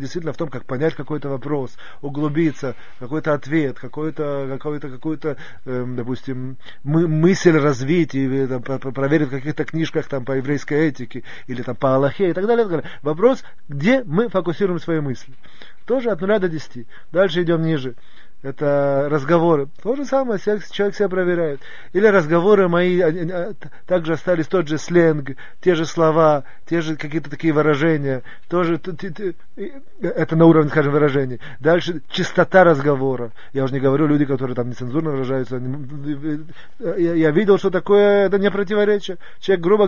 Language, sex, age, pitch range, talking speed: Russian, male, 30-49, 140-180 Hz, 150 wpm